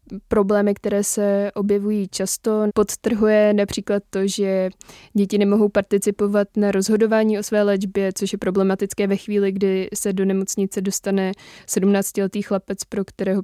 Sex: female